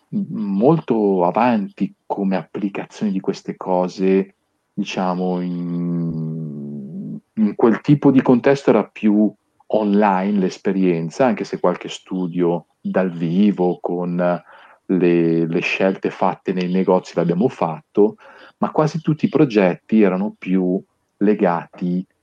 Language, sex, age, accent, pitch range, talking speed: Italian, male, 40-59, native, 90-115 Hz, 110 wpm